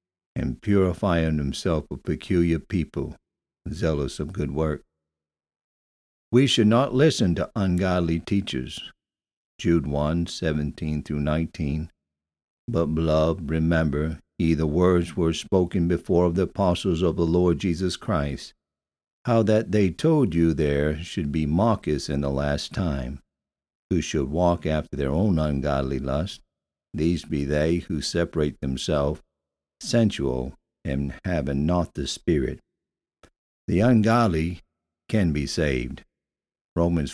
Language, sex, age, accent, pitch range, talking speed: English, male, 60-79, American, 75-90 Hz, 125 wpm